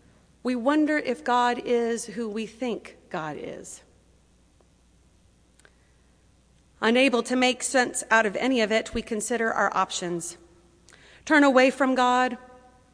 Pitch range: 195-250 Hz